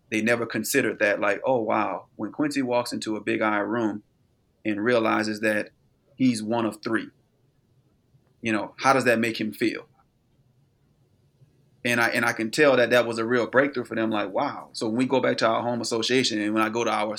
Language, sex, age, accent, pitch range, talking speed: English, male, 30-49, American, 110-130 Hz, 215 wpm